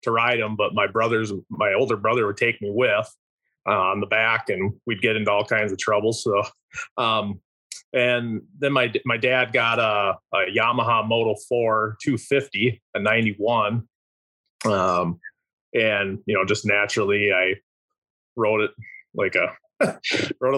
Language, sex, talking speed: English, male, 155 wpm